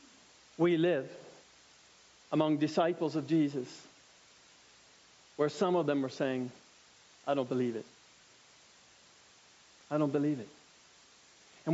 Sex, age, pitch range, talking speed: male, 40-59, 140-210 Hz, 105 wpm